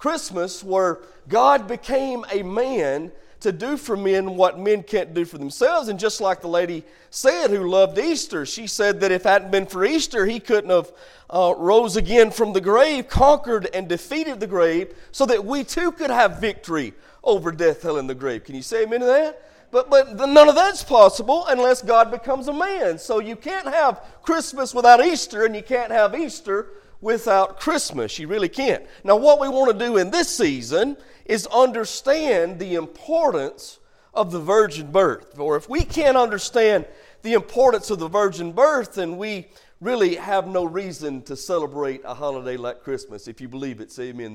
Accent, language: American, English